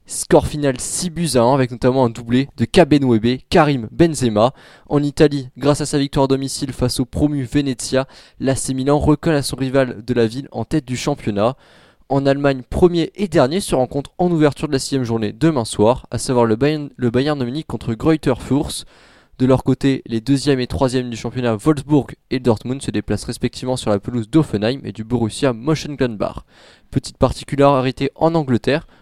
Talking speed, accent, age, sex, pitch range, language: 185 wpm, French, 20-39, male, 125-150 Hz, French